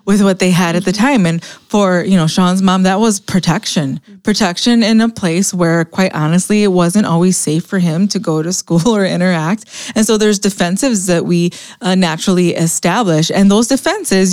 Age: 20-39